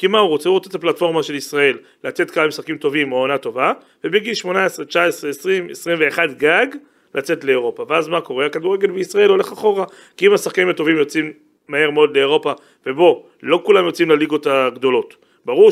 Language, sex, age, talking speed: Hebrew, male, 40-59, 185 wpm